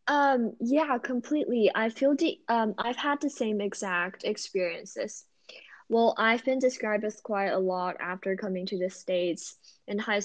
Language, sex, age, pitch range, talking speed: English, female, 10-29, 185-220 Hz, 165 wpm